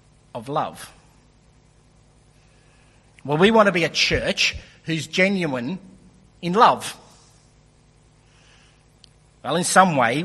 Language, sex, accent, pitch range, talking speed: English, male, Australian, 130-160 Hz, 95 wpm